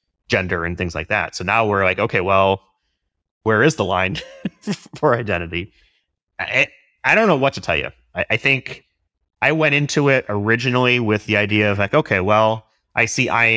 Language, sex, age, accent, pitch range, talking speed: English, male, 30-49, American, 90-115 Hz, 190 wpm